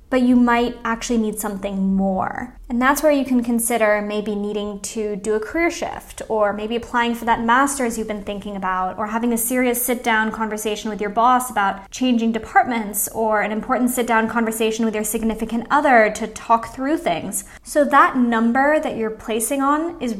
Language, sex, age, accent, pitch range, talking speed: English, female, 10-29, American, 215-265 Hz, 185 wpm